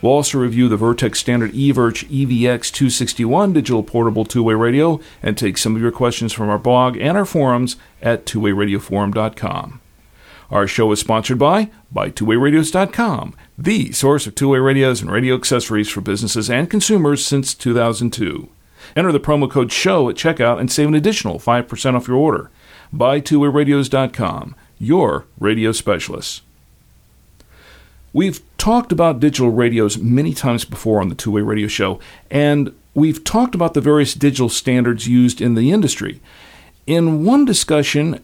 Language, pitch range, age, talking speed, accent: English, 110-150 Hz, 50-69, 150 wpm, American